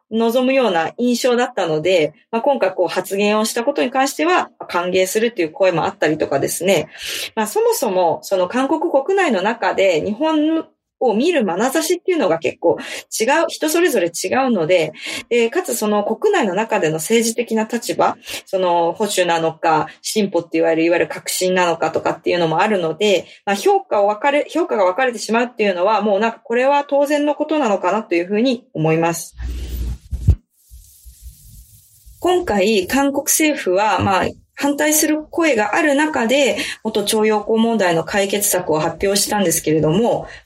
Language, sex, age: Japanese, female, 20-39